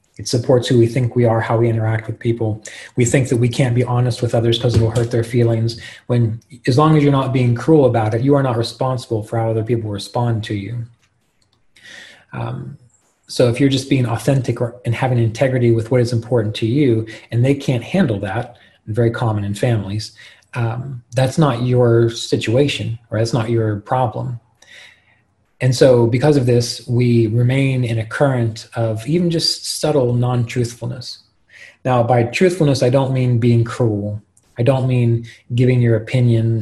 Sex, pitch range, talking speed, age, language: male, 115-130 Hz, 185 wpm, 30-49, English